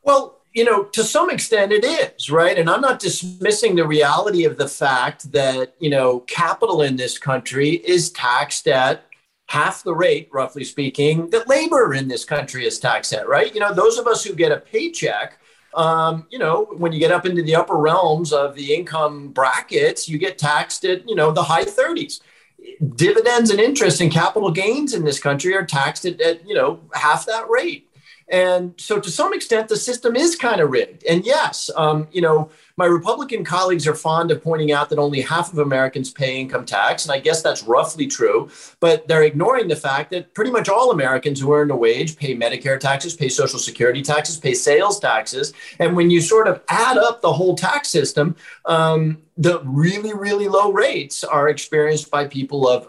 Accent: American